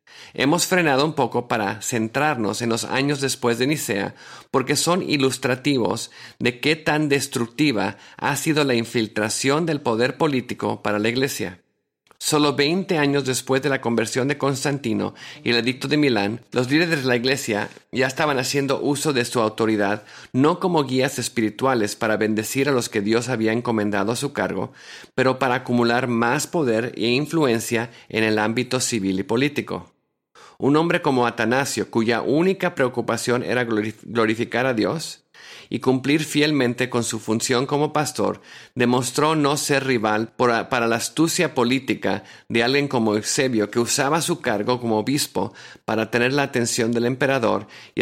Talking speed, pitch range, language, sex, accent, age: 160 wpm, 110-140 Hz, English, male, Mexican, 50-69